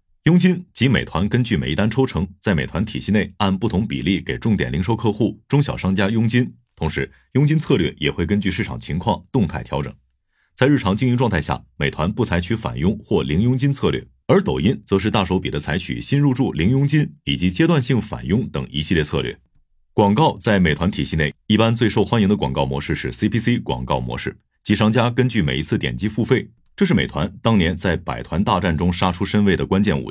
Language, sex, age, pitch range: Chinese, male, 30-49, 85-115 Hz